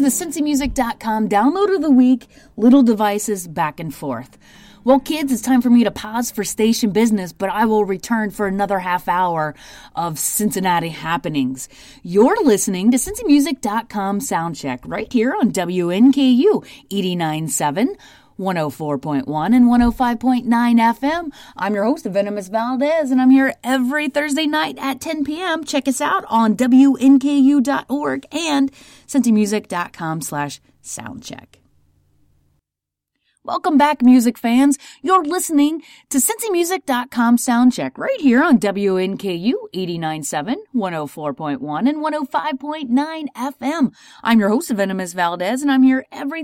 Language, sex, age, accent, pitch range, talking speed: English, female, 30-49, American, 190-280 Hz, 125 wpm